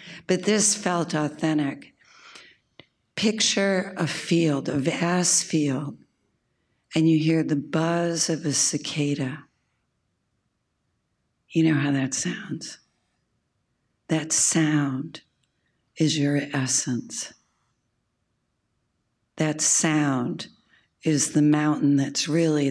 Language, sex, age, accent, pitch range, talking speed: English, female, 60-79, American, 140-160 Hz, 90 wpm